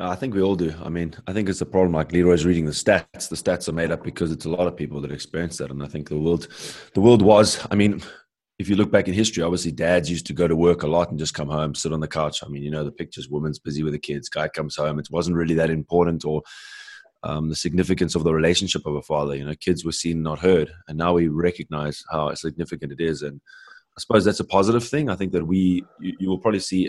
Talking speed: 275 wpm